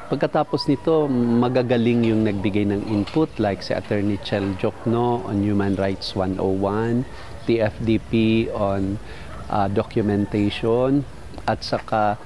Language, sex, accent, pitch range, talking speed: Filipino, male, native, 100-115 Hz, 110 wpm